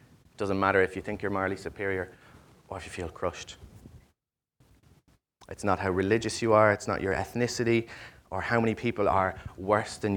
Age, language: 30-49, English